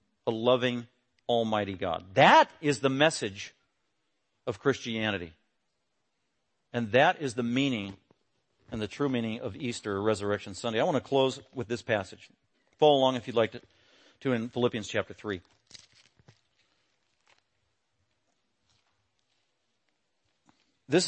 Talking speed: 120 wpm